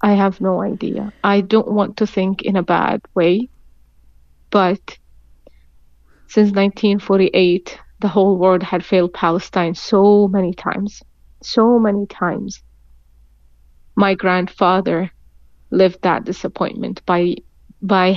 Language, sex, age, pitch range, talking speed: English, female, 30-49, 175-205 Hz, 115 wpm